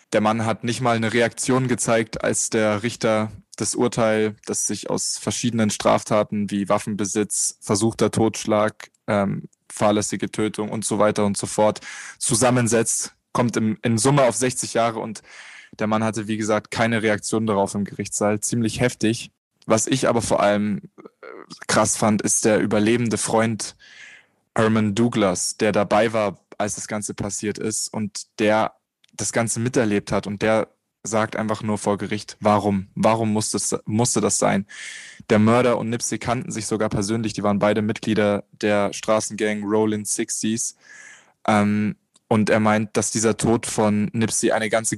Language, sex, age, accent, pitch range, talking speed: German, male, 10-29, German, 105-115 Hz, 155 wpm